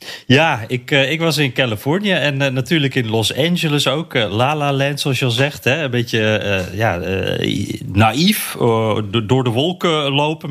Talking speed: 150 wpm